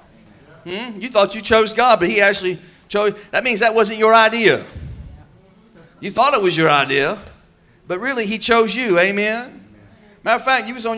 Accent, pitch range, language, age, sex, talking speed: American, 160-205 Hz, English, 40-59, male, 185 wpm